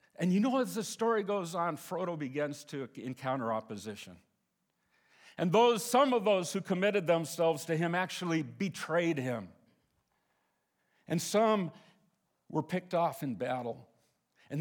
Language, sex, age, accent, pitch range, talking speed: English, male, 50-69, American, 145-205 Hz, 140 wpm